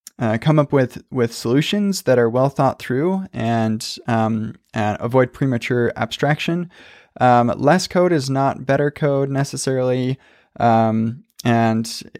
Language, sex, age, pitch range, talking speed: English, male, 20-39, 115-135 Hz, 135 wpm